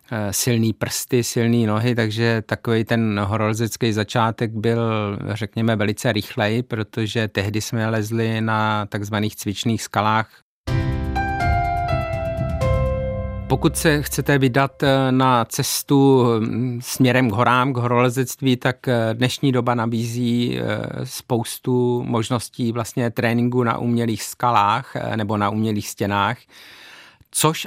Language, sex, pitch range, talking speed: Czech, male, 105-120 Hz, 105 wpm